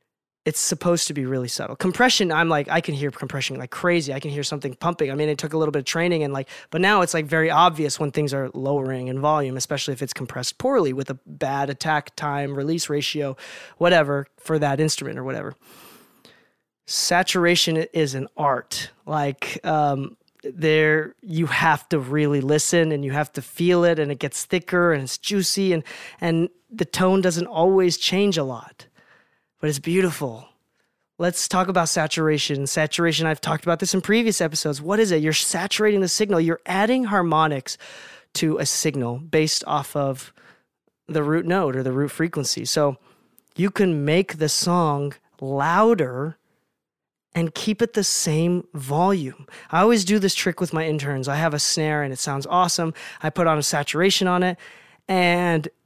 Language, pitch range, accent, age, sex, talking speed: English, 145-175 Hz, American, 20-39, male, 185 wpm